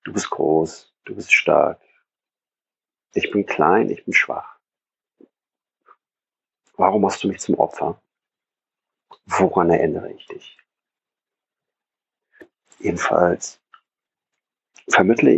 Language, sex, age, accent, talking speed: German, male, 50-69, German, 95 wpm